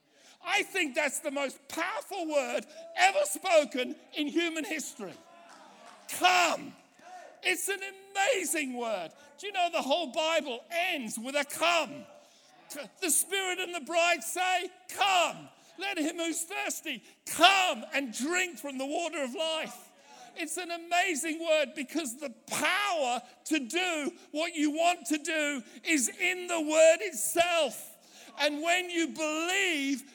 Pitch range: 250-340 Hz